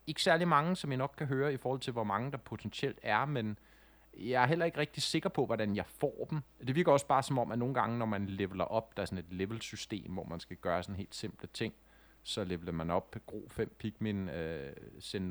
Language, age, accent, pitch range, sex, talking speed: Danish, 30-49, native, 95-115 Hz, male, 250 wpm